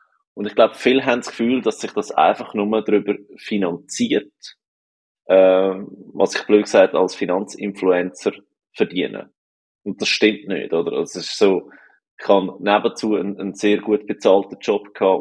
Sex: male